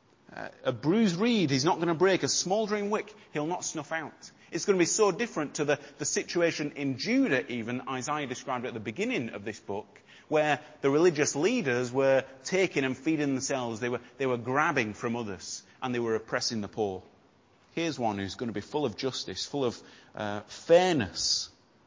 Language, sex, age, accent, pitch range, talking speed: English, male, 30-49, British, 125-170 Hz, 200 wpm